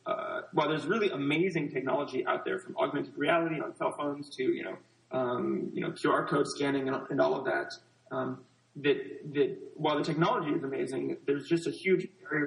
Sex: male